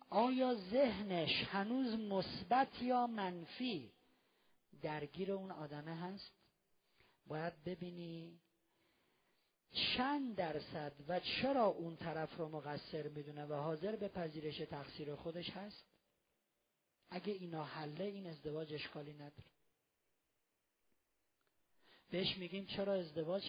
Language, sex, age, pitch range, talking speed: Persian, male, 40-59, 160-210 Hz, 100 wpm